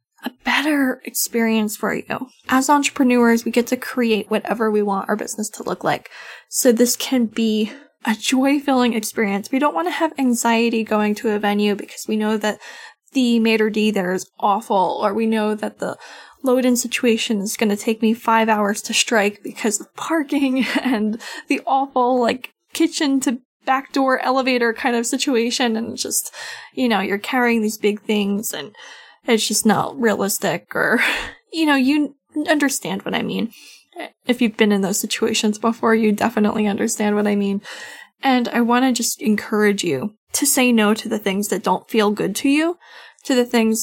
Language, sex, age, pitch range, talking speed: English, female, 10-29, 215-265 Hz, 190 wpm